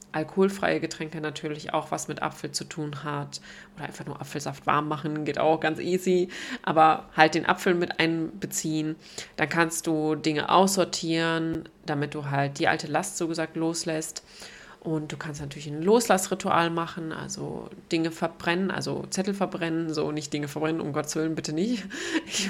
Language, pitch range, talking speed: German, 155-180 Hz, 170 wpm